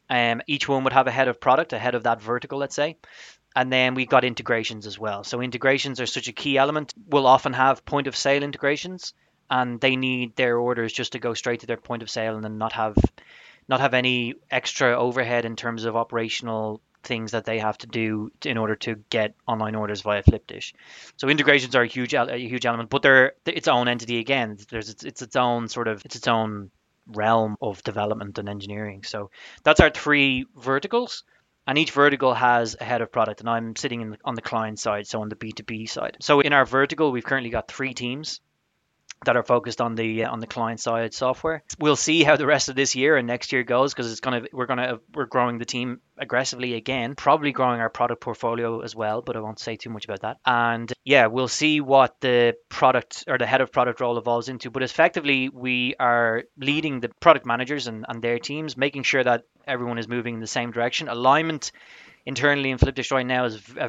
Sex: male